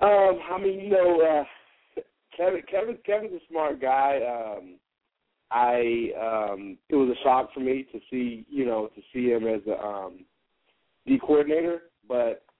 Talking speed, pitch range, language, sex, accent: 160 wpm, 110-140 Hz, English, male, American